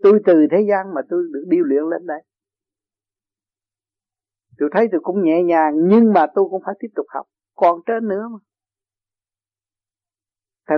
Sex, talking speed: male, 165 wpm